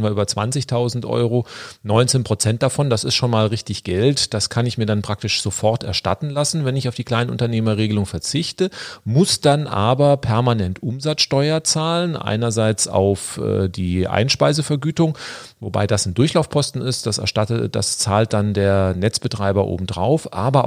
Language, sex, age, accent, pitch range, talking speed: German, male, 40-59, German, 100-125 Hz, 145 wpm